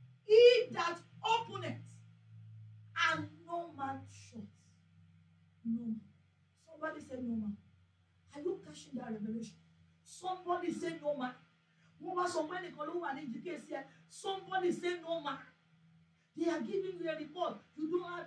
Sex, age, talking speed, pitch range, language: female, 40-59, 120 wpm, 220-345 Hz, English